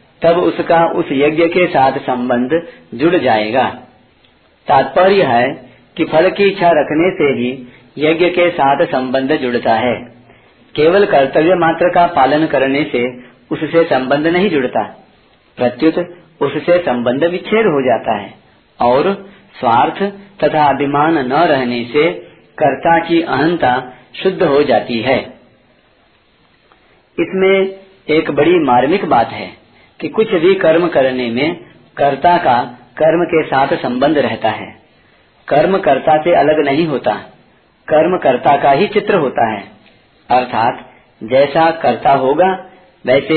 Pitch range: 125-170 Hz